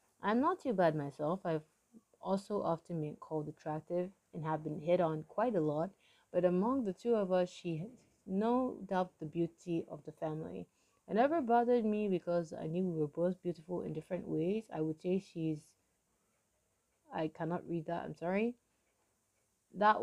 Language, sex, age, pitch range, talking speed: English, female, 20-39, 155-185 Hz, 175 wpm